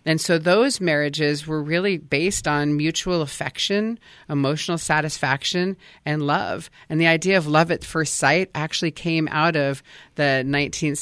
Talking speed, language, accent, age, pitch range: 150 wpm, English, American, 40-59, 145-170 Hz